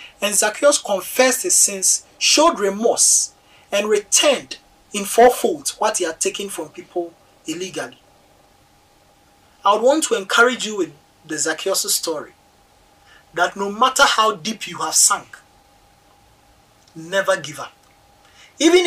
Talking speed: 125 wpm